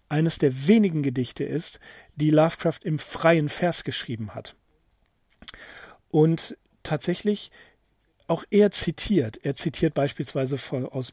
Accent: German